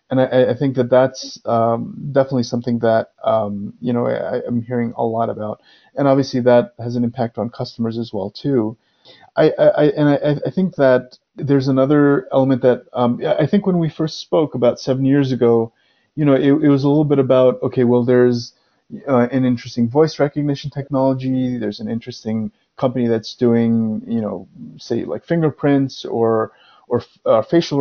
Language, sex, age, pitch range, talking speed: English, male, 30-49, 120-140 Hz, 185 wpm